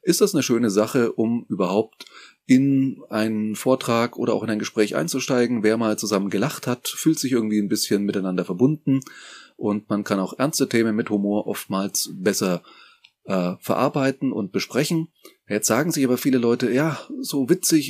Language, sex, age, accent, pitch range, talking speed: German, male, 30-49, German, 110-135 Hz, 170 wpm